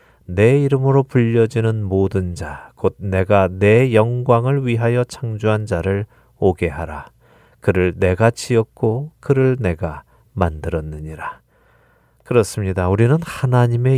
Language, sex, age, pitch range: Korean, male, 40-59, 90-120 Hz